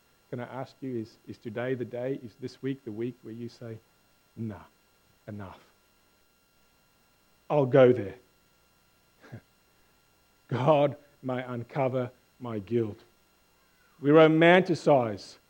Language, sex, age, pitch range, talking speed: English, male, 40-59, 110-150 Hz, 110 wpm